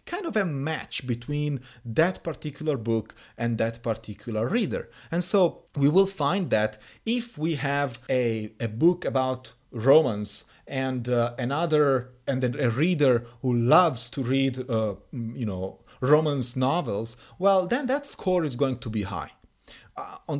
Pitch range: 115-160 Hz